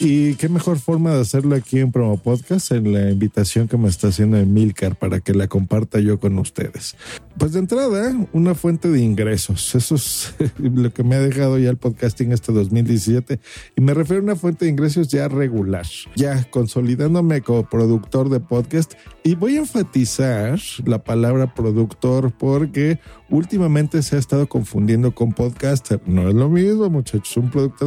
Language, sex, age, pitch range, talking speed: Spanish, male, 50-69, 110-150 Hz, 175 wpm